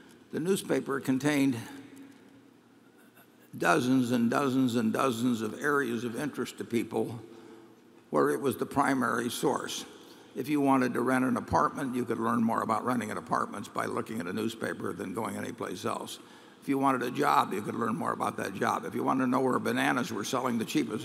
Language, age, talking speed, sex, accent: English, 60-79, 190 wpm, male, American